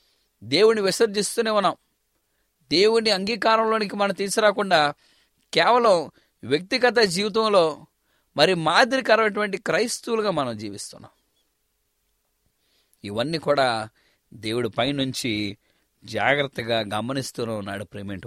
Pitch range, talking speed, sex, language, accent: 135-210 Hz, 100 wpm, male, English, Indian